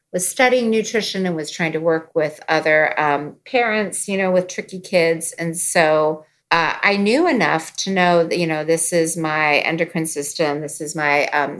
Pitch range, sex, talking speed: 160-195 Hz, female, 190 wpm